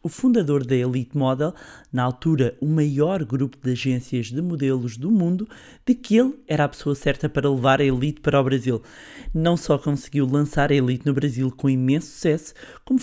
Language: Portuguese